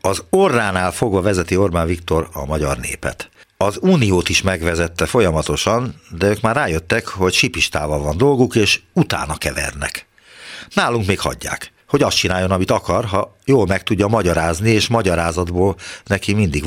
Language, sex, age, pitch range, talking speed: Hungarian, male, 60-79, 85-115 Hz, 150 wpm